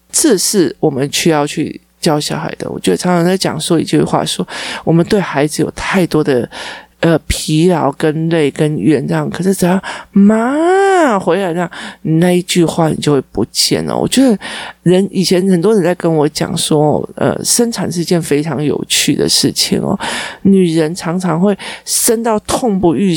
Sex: male